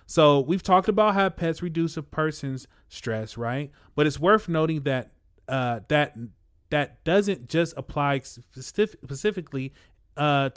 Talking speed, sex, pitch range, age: 140 wpm, male, 130-160 Hz, 30-49